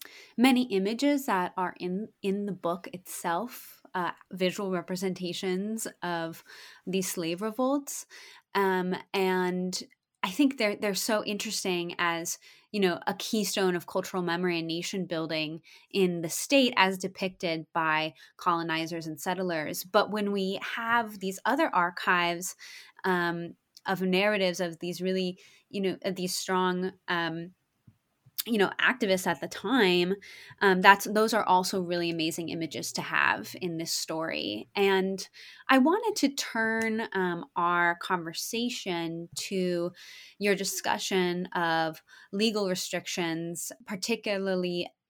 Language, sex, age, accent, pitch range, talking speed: English, female, 20-39, American, 170-205 Hz, 130 wpm